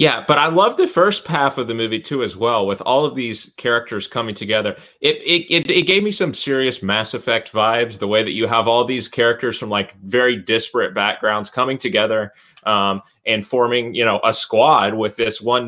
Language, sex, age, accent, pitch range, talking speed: English, male, 20-39, American, 100-125 Hz, 215 wpm